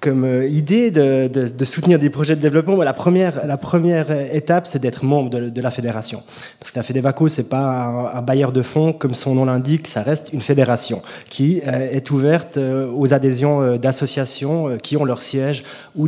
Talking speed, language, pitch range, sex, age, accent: 200 wpm, French, 125-150 Hz, male, 20-39, French